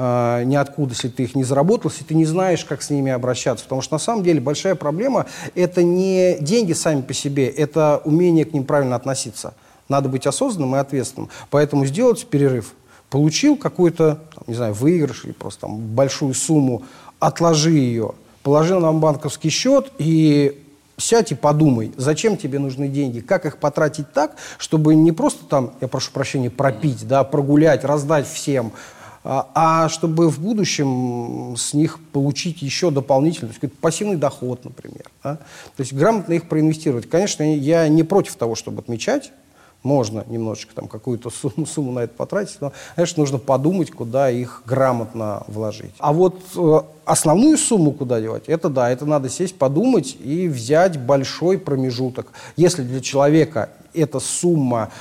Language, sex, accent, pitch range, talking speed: Russian, male, native, 130-160 Hz, 160 wpm